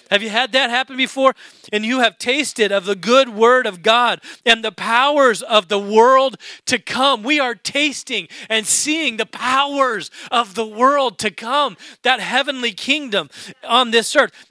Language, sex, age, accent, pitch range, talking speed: English, male, 40-59, American, 210-250 Hz, 175 wpm